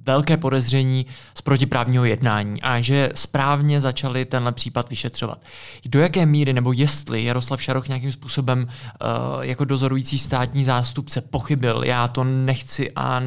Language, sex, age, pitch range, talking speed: Czech, male, 20-39, 125-155 Hz, 140 wpm